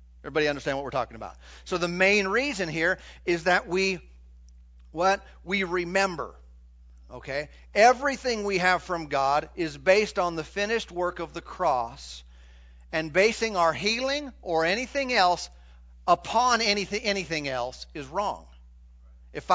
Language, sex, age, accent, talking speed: English, male, 50-69, American, 140 wpm